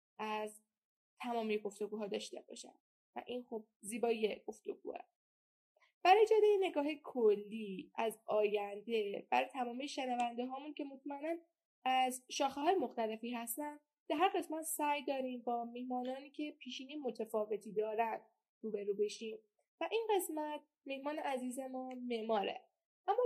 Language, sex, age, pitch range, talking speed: Persian, female, 10-29, 230-295 Hz, 125 wpm